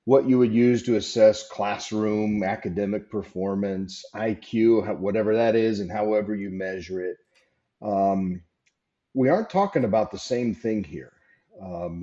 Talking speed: 140 wpm